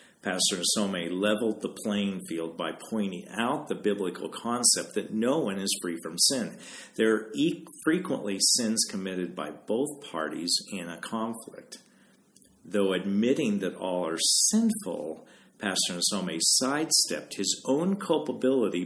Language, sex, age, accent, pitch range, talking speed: English, male, 50-69, American, 90-115 Hz, 135 wpm